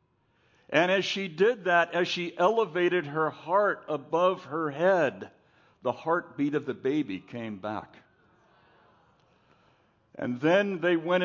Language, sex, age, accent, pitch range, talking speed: English, male, 60-79, American, 125-170 Hz, 130 wpm